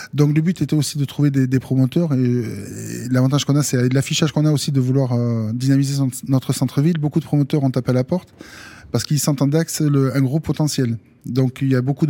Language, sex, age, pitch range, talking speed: French, male, 20-39, 125-145 Hz, 245 wpm